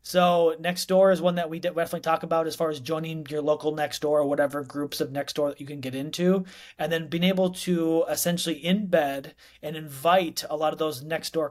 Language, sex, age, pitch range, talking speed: English, male, 30-49, 145-170 Hz, 215 wpm